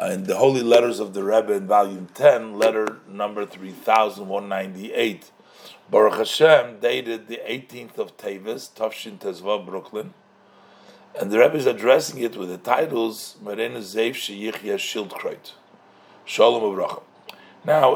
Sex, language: male, English